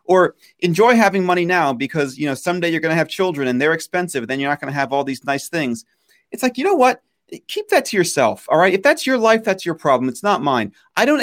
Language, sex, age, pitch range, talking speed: English, male, 30-49, 150-220 Hz, 265 wpm